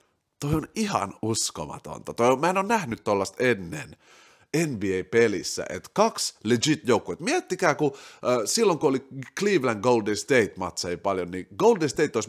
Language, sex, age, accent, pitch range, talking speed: Finnish, male, 30-49, native, 115-190 Hz, 130 wpm